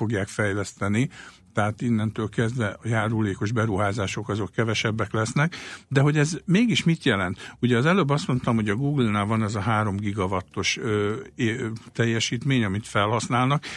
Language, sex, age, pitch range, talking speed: Hungarian, male, 60-79, 100-125 Hz, 155 wpm